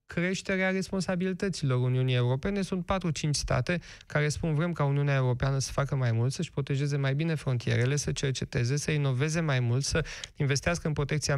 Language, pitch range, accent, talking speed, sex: Romanian, 130-160 Hz, native, 170 wpm, male